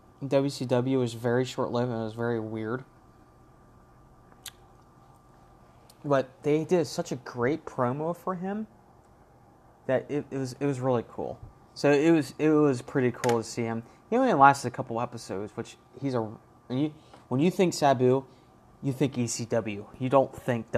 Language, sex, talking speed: English, male, 160 wpm